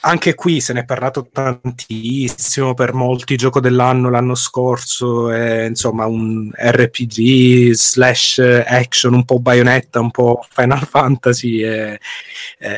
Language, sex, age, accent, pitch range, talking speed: Italian, male, 30-49, native, 120-165 Hz, 130 wpm